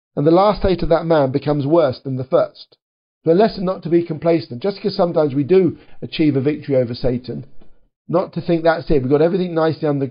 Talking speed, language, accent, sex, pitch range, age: 225 wpm, English, British, male, 145-175 Hz, 50-69